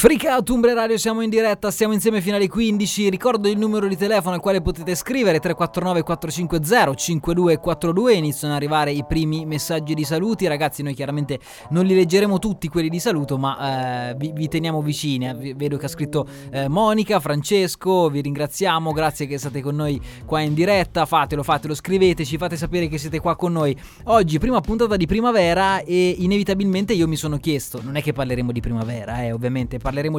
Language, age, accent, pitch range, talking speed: Italian, 20-39, native, 145-185 Hz, 190 wpm